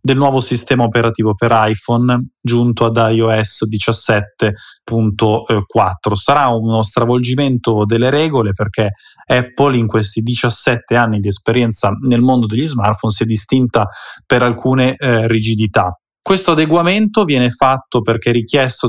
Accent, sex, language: native, male, Italian